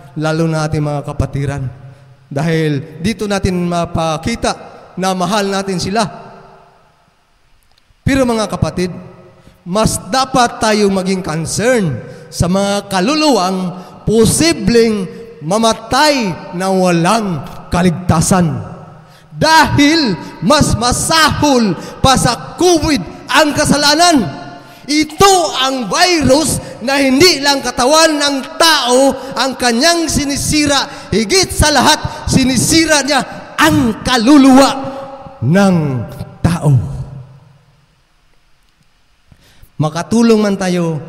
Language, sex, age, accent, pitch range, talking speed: English, male, 20-39, Filipino, 150-250 Hz, 90 wpm